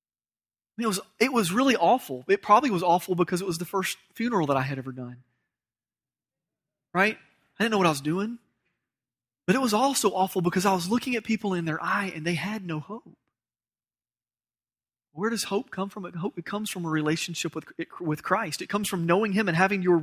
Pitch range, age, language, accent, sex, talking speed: 145-200 Hz, 30-49, English, American, male, 205 wpm